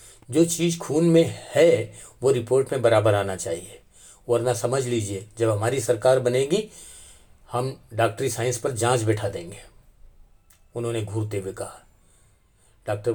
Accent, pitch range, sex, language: native, 105-135 Hz, male, Hindi